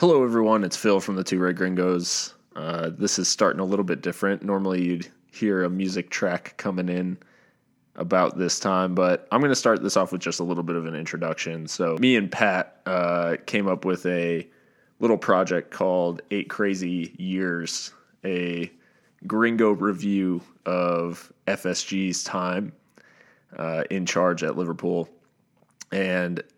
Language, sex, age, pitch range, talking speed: English, male, 20-39, 85-95 Hz, 160 wpm